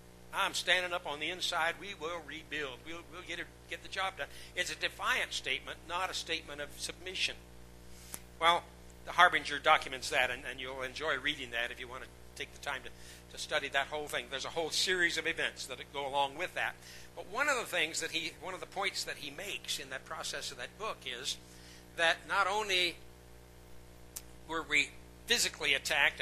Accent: American